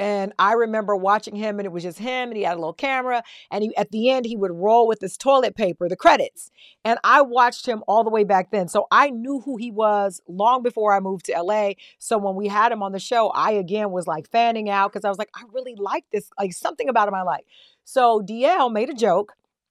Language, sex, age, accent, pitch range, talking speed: English, female, 40-59, American, 195-240 Hz, 255 wpm